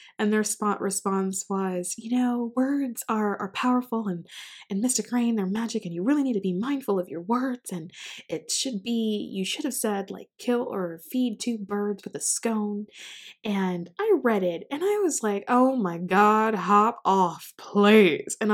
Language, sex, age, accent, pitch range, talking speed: English, female, 20-39, American, 185-240 Hz, 190 wpm